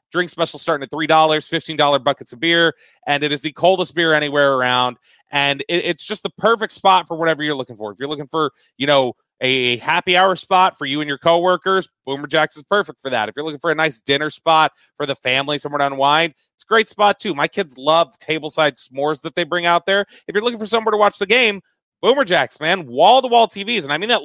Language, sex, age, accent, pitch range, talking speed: English, male, 30-49, American, 140-180 Hz, 245 wpm